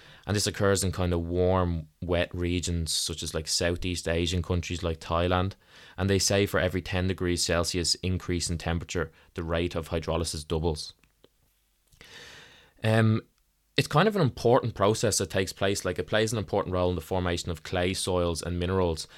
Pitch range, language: 85-95 Hz, English